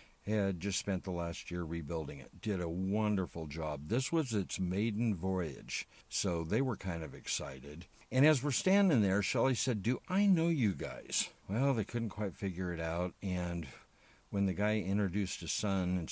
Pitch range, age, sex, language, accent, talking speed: 85-110 Hz, 60-79, male, English, American, 185 wpm